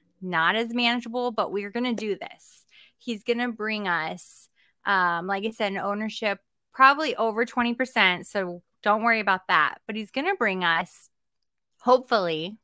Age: 20-39